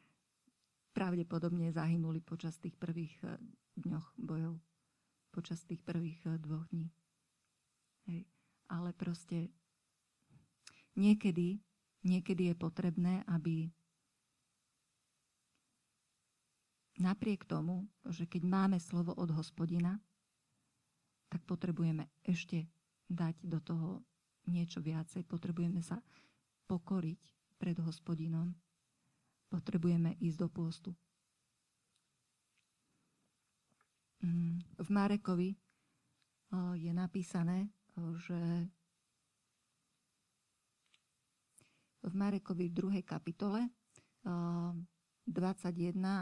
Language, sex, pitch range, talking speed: Slovak, female, 170-185 Hz, 75 wpm